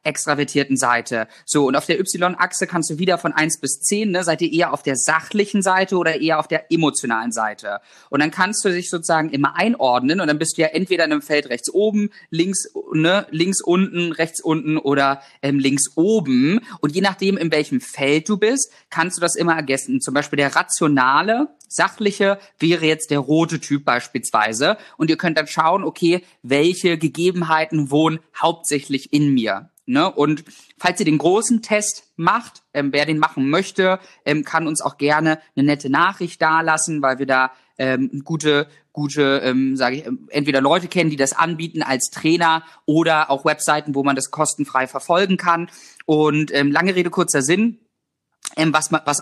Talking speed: 185 wpm